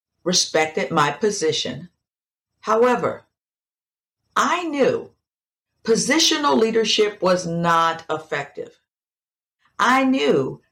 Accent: American